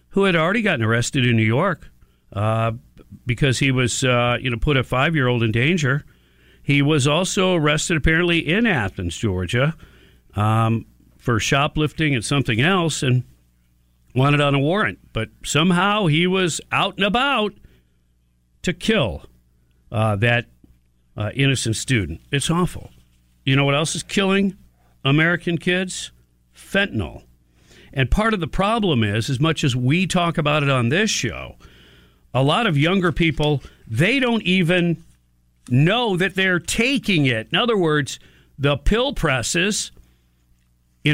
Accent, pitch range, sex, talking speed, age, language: American, 105-175 Hz, male, 145 wpm, 50-69, English